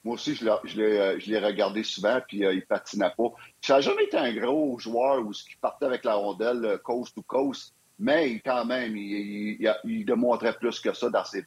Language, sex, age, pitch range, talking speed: French, male, 60-79, 105-140 Hz, 240 wpm